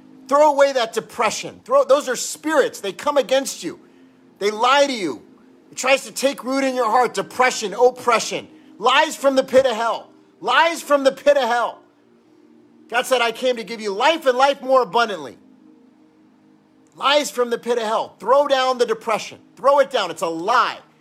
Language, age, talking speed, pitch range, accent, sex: English, 40-59, 185 wpm, 175-270 Hz, American, male